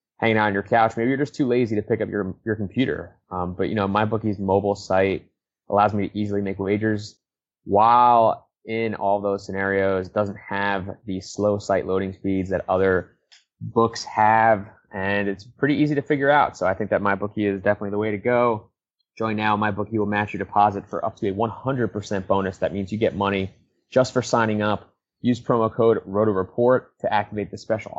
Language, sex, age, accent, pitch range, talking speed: English, male, 20-39, American, 95-115 Hz, 210 wpm